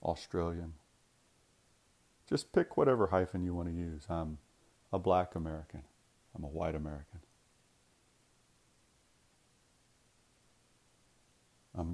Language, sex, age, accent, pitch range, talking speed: English, male, 50-69, American, 75-95 Hz, 90 wpm